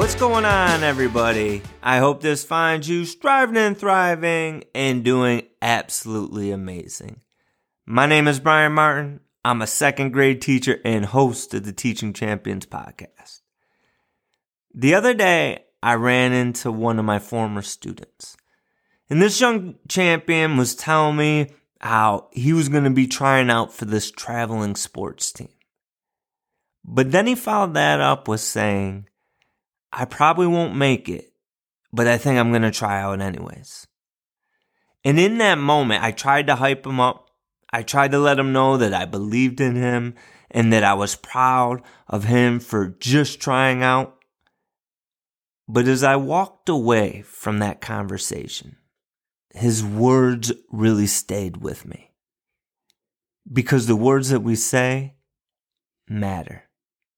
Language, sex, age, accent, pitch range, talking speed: English, male, 20-39, American, 110-145 Hz, 145 wpm